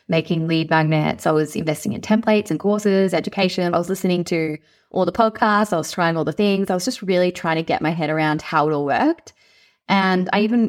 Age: 20-39